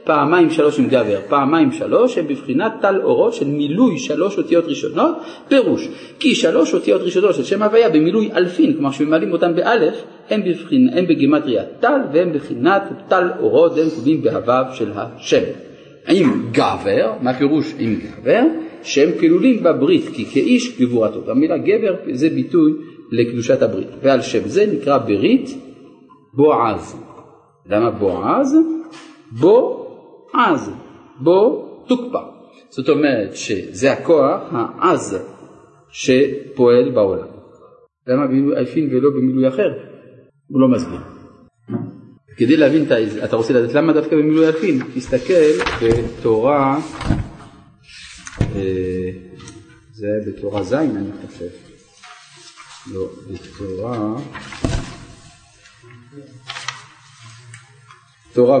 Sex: male